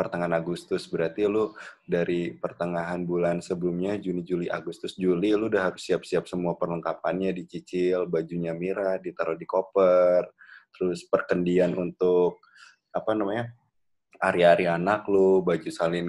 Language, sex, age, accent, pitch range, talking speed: Indonesian, male, 20-39, native, 90-125 Hz, 125 wpm